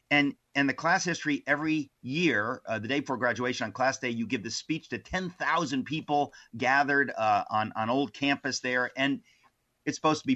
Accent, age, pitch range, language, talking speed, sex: American, 40-59, 115-140 Hz, English, 195 wpm, male